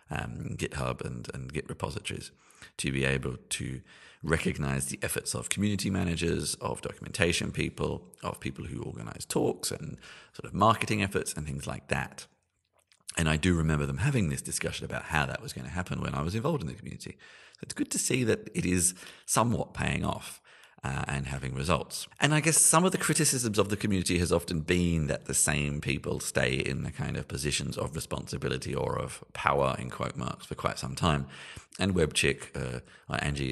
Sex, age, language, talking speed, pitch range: male, 40-59, English, 190 wpm, 70-95 Hz